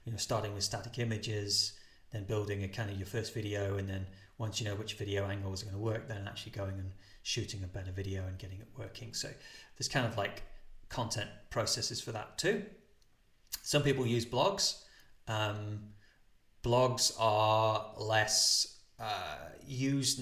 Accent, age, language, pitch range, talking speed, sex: British, 30-49, English, 105-130 Hz, 170 wpm, male